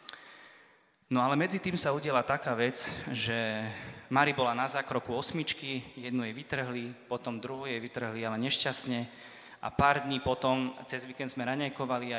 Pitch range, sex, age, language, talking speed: 120-135 Hz, male, 20-39, Slovak, 160 wpm